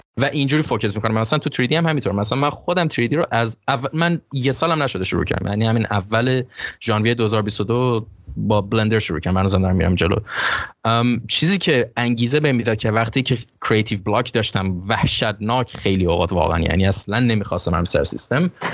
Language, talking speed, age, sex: English, 185 wpm, 20-39, male